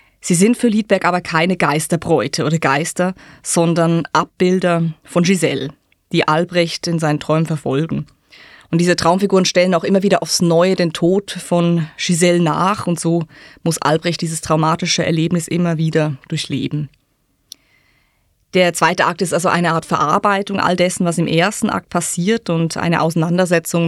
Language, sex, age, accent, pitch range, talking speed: German, female, 20-39, German, 160-185 Hz, 155 wpm